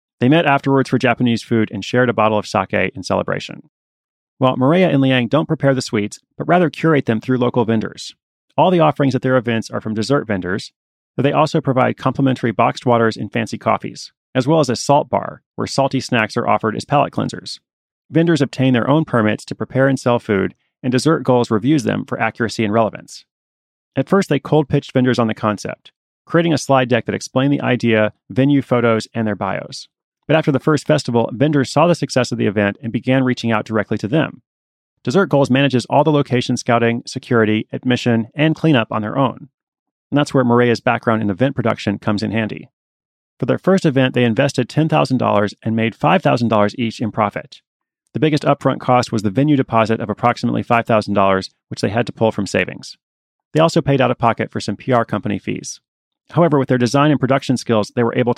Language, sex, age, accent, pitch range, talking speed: English, male, 30-49, American, 110-140 Hz, 205 wpm